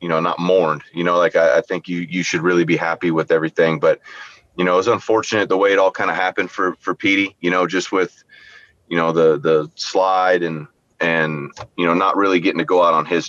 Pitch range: 80-90 Hz